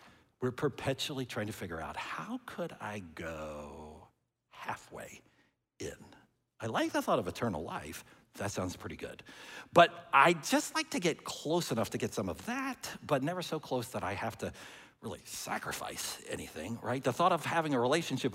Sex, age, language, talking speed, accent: male, 60-79, English, 175 wpm, American